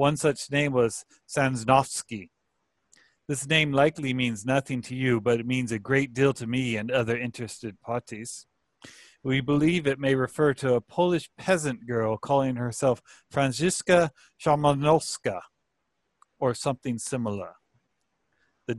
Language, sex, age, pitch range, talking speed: English, male, 40-59, 120-145 Hz, 135 wpm